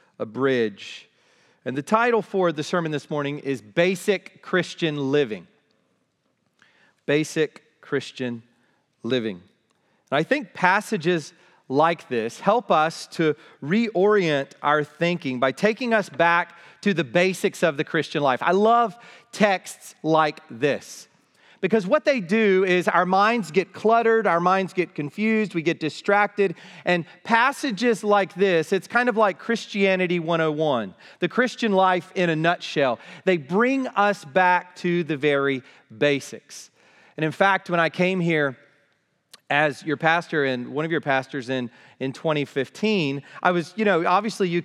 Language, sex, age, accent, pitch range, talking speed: English, male, 40-59, American, 150-195 Hz, 145 wpm